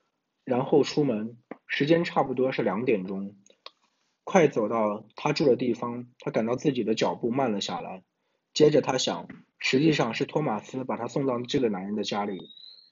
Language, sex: Chinese, male